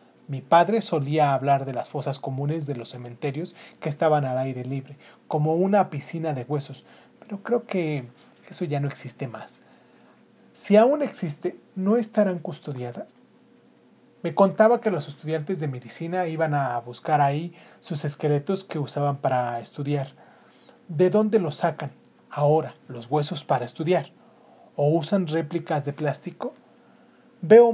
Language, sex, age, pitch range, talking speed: Spanish, male, 30-49, 140-185 Hz, 145 wpm